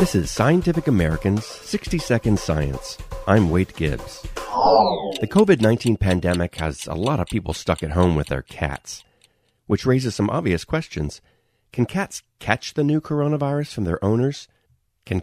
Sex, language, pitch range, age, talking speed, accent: male, English, 80-120 Hz, 40-59, 150 wpm, American